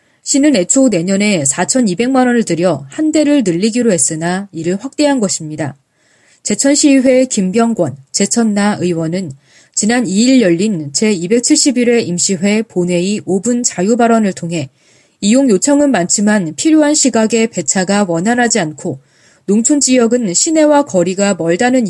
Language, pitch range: Korean, 175-250 Hz